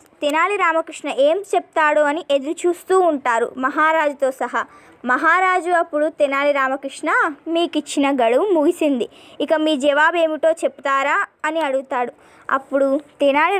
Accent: native